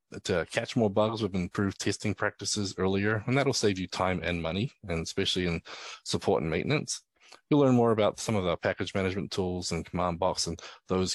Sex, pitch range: male, 90-105 Hz